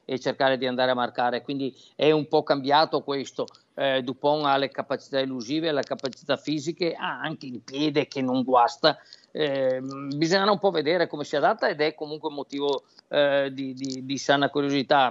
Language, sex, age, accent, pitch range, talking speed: Italian, male, 50-69, native, 135-155 Hz, 185 wpm